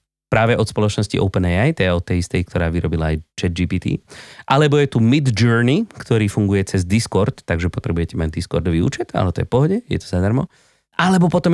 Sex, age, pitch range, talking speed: male, 30-49, 95-145 Hz, 180 wpm